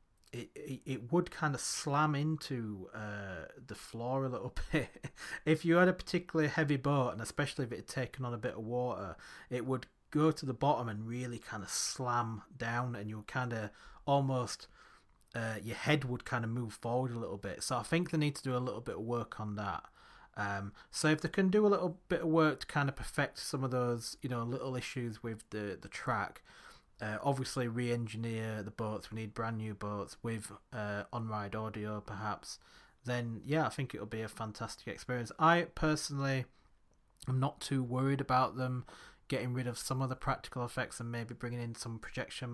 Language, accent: English, British